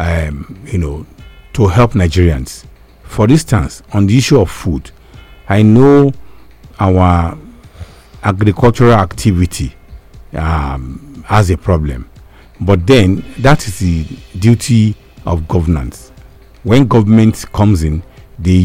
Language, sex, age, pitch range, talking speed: English, male, 50-69, 85-115 Hz, 115 wpm